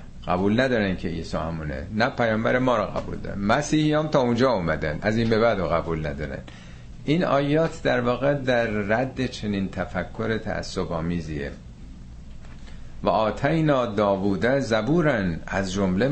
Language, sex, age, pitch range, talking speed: Persian, male, 50-69, 85-120 Hz, 140 wpm